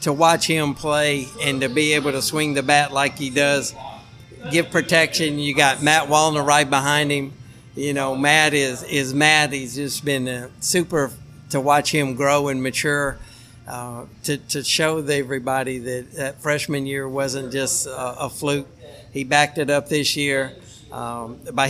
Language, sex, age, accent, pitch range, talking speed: English, male, 60-79, American, 135-155 Hz, 170 wpm